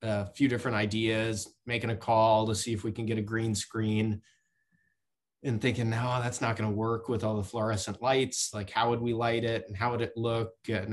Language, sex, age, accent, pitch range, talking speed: English, male, 20-39, American, 105-125 Hz, 220 wpm